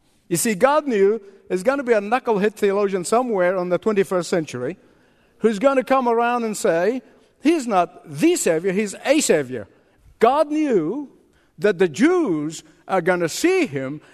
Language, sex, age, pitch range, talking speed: English, male, 50-69, 185-275 Hz, 170 wpm